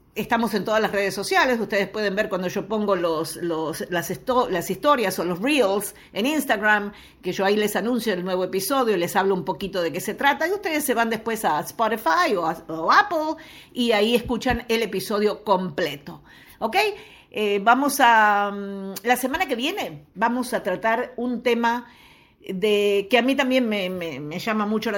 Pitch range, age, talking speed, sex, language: 195-265 Hz, 50-69, 190 wpm, female, Spanish